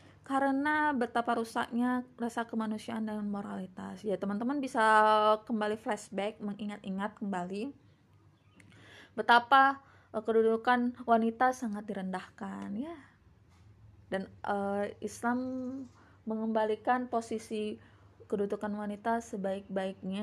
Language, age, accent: Indonesian, 20-39, native